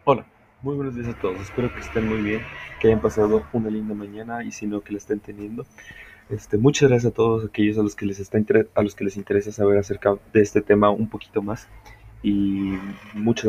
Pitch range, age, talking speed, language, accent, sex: 100-110 Hz, 20-39, 225 wpm, Spanish, Mexican, male